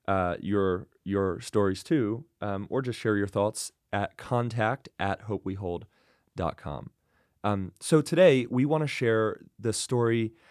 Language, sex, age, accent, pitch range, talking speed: English, male, 30-49, American, 100-120 Hz, 135 wpm